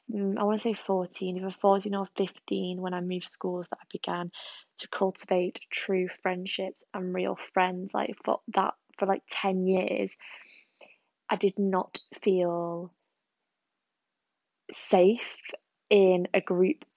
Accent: British